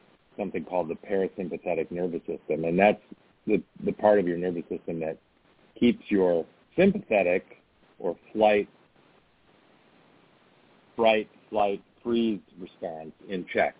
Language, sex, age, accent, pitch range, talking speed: English, male, 50-69, American, 85-105 Hz, 115 wpm